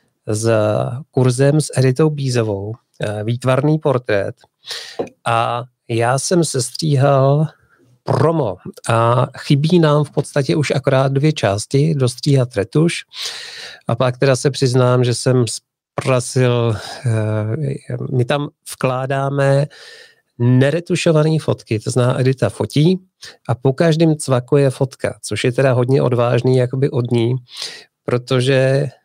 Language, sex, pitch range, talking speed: Czech, male, 120-140 Hz, 115 wpm